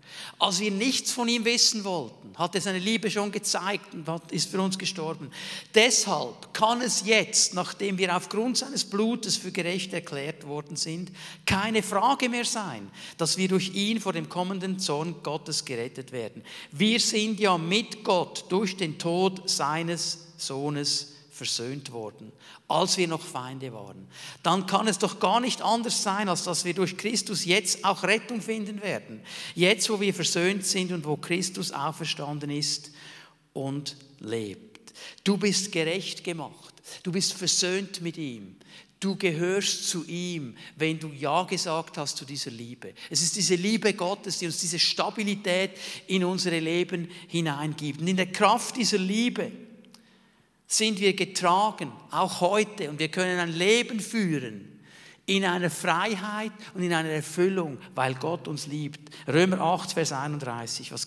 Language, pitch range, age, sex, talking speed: German, 155-200 Hz, 50-69, male, 160 wpm